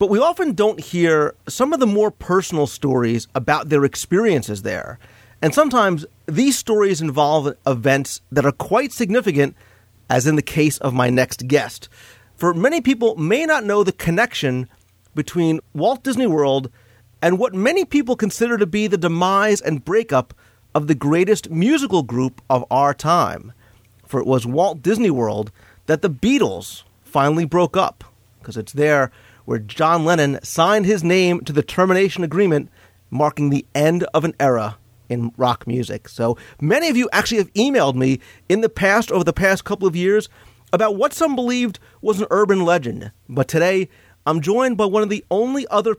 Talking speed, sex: 175 wpm, male